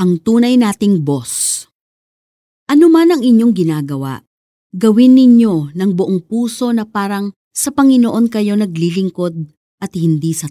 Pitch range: 180-260 Hz